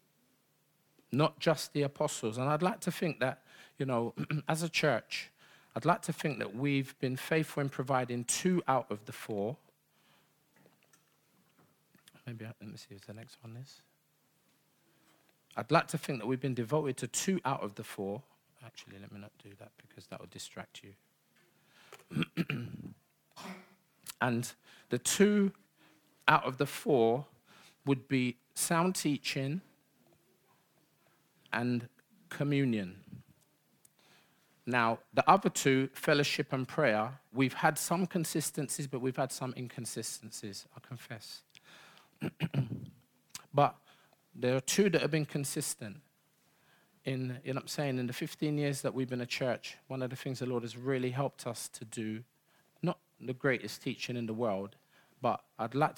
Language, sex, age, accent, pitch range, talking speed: English, male, 40-59, British, 120-155 Hz, 150 wpm